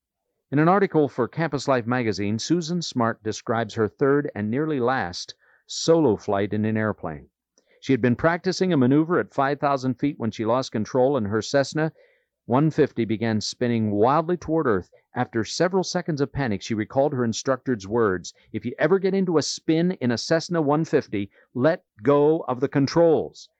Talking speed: 175 wpm